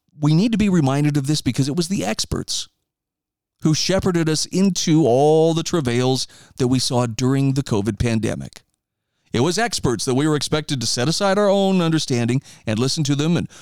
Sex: male